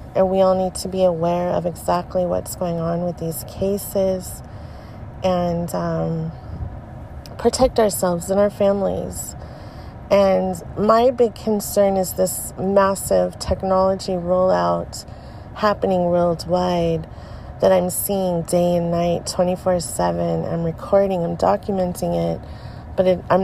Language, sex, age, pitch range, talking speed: English, female, 30-49, 165-200 Hz, 120 wpm